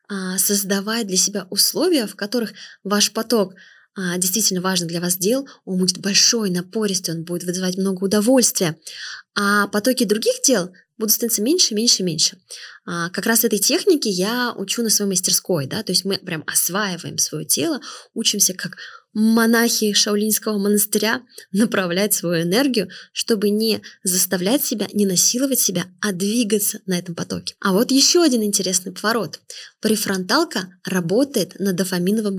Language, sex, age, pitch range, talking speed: Russian, female, 20-39, 185-235 Hz, 145 wpm